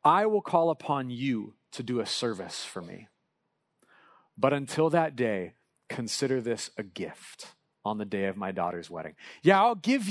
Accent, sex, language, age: American, male, English, 40-59